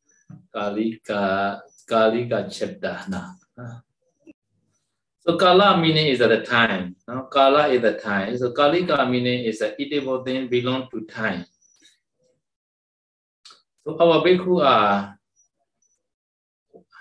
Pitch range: 110-135 Hz